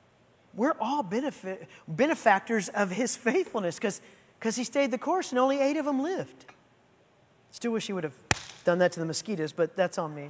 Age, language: 40-59, English